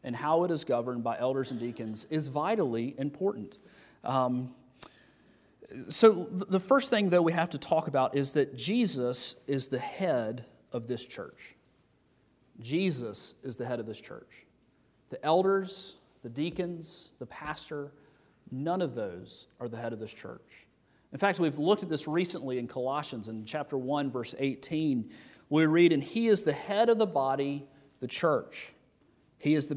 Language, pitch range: English, 130-175 Hz